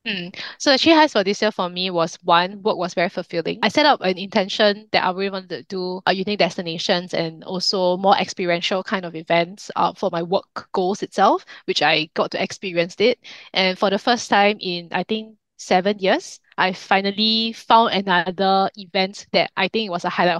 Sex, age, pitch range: female, 10-29, 185-220 Hz